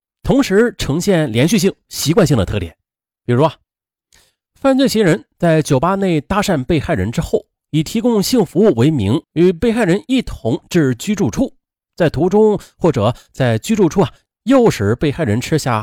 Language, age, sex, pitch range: Chinese, 30-49, male, 120-205 Hz